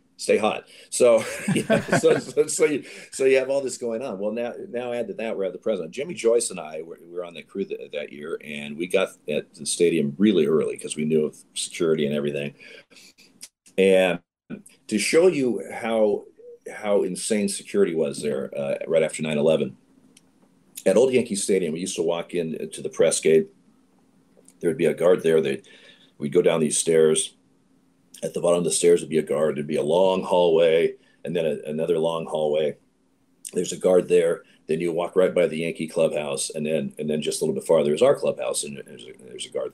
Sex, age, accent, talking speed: male, 40-59, American, 215 wpm